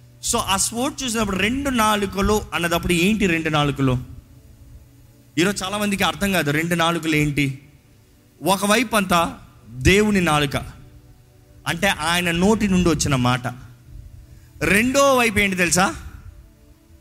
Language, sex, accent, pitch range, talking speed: Telugu, male, native, 125-210 Hz, 115 wpm